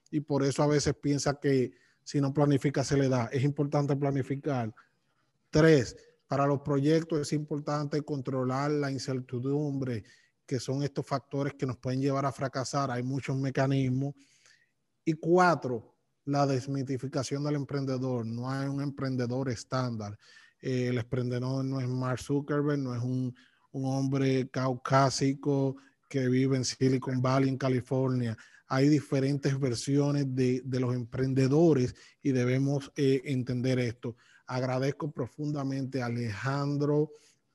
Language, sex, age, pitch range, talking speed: English, male, 20-39, 130-145 Hz, 135 wpm